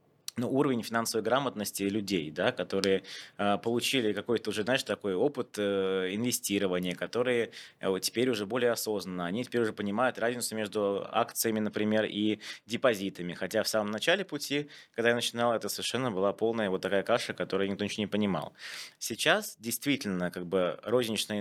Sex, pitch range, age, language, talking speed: male, 95-115 Hz, 20-39, Russian, 155 wpm